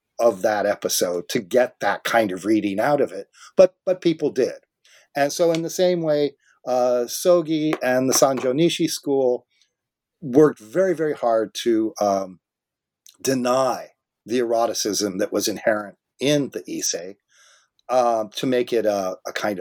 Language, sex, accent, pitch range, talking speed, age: English, male, American, 105-145 Hz, 155 wpm, 50-69